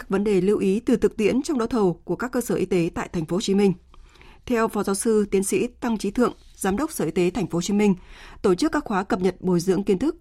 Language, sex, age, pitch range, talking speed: Vietnamese, female, 20-39, 185-240 Hz, 305 wpm